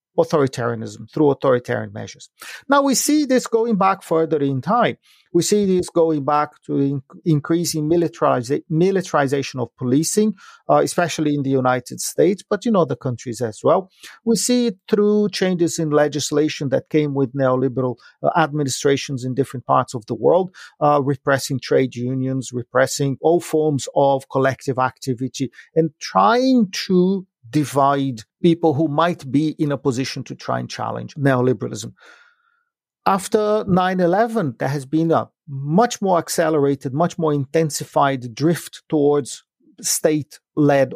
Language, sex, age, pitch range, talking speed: English, male, 40-59, 135-175 Hz, 140 wpm